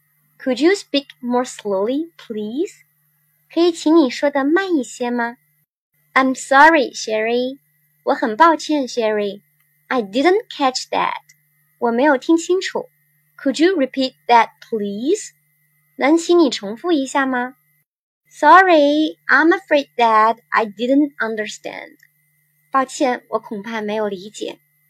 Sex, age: male, 20-39